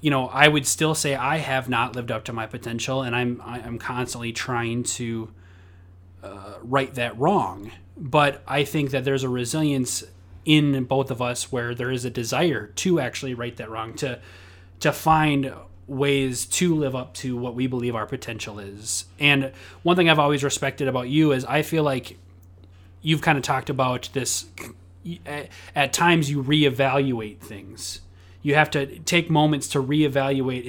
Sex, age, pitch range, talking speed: male, 30-49, 100-140 Hz, 175 wpm